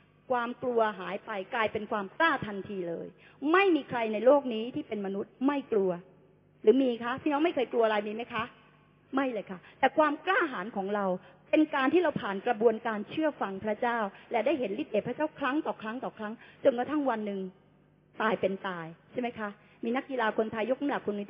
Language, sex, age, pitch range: Thai, female, 30-49, 195-265 Hz